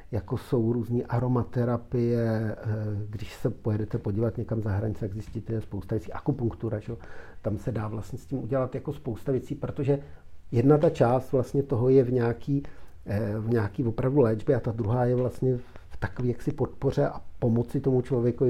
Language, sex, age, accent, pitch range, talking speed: Czech, male, 50-69, native, 115-140 Hz, 175 wpm